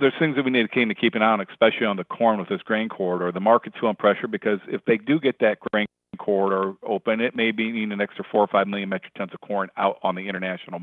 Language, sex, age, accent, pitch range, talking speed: English, male, 50-69, American, 95-110 Hz, 270 wpm